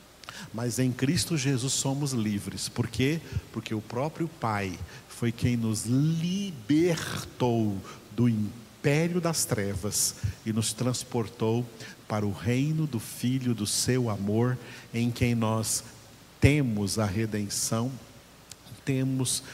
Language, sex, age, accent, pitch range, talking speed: Portuguese, male, 50-69, Brazilian, 110-140 Hz, 115 wpm